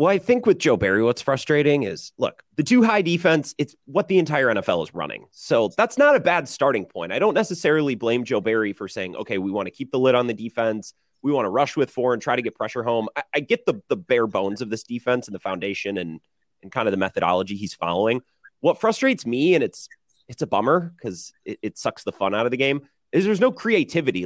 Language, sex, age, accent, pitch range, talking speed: English, male, 30-49, American, 115-175 Hz, 245 wpm